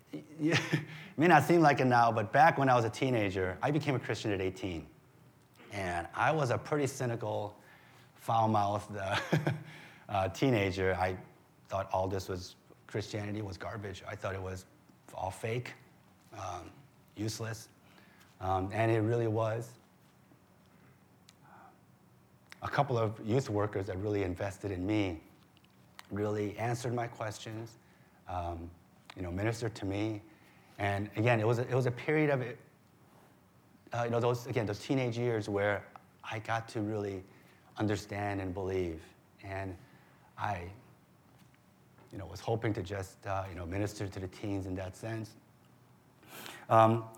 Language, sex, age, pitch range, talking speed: English, male, 30-49, 100-125 Hz, 150 wpm